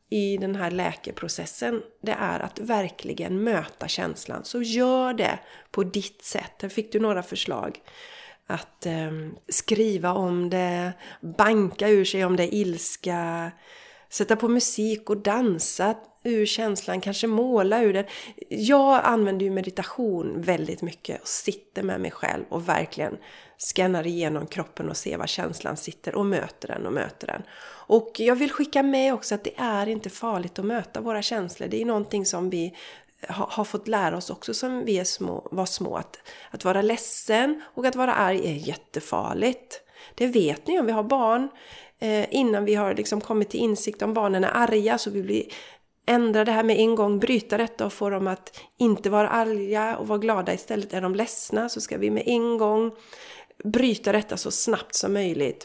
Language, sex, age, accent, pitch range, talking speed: Swedish, female, 30-49, native, 195-230 Hz, 180 wpm